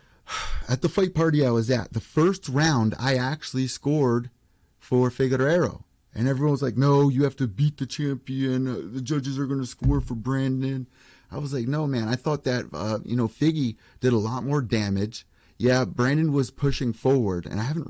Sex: male